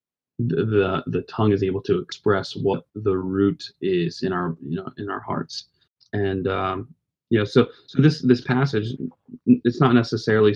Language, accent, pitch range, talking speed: English, American, 100-125 Hz, 170 wpm